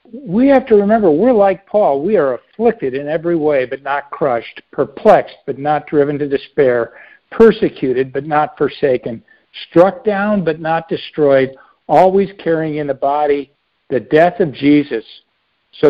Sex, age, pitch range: male, 60-79, 135-170 Hz